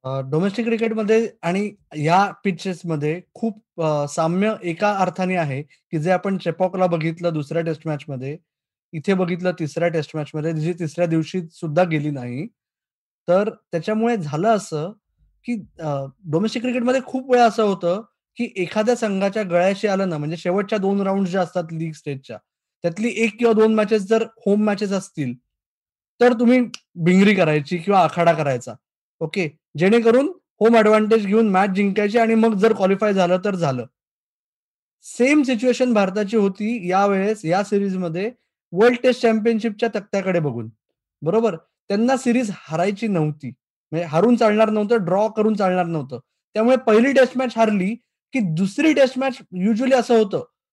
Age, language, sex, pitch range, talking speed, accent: 20-39, Marathi, male, 170-225 Hz, 145 wpm, native